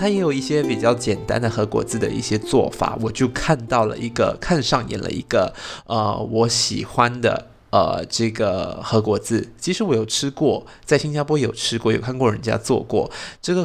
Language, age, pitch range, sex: Chinese, 20-39, 110-145 Hz, male